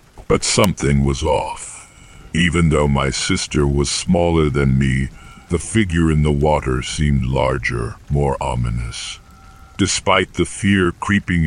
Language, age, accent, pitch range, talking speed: English, 60-79, American, 65-85 Hz, 130 wpm